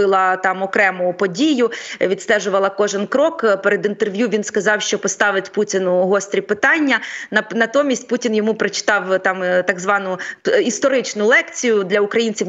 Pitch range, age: 200-245 Hz, 30-49